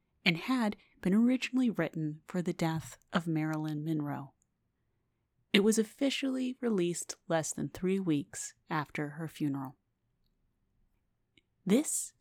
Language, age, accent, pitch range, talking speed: English, 30-49, American, 150-195 Hz, 115 wpm